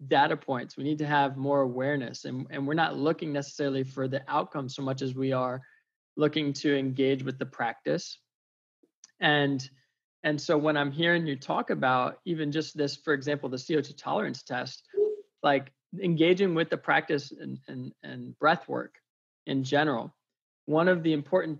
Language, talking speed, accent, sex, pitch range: English, 170 wpm, American, male, 135-165 Hz